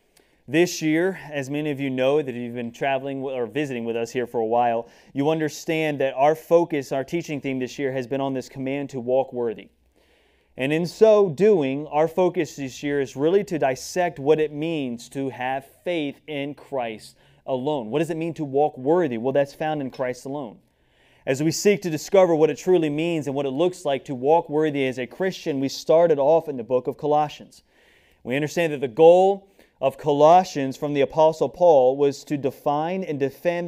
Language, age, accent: English, 30-49, American